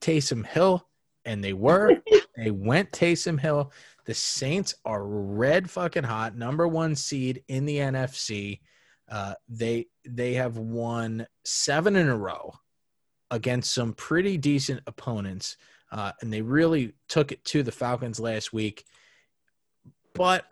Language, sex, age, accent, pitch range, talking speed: English, male, 20-39, American, 115-145 Hz, 135 wpm